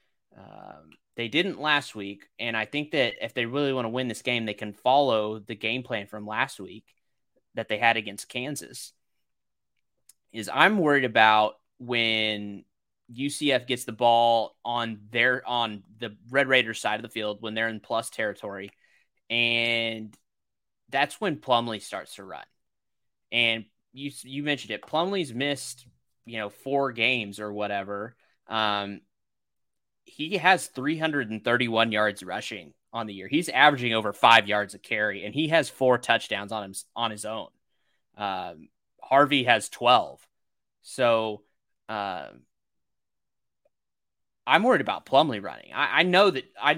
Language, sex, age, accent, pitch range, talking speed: English, male, 20-39, American, 105-130 Hz, 150 wpm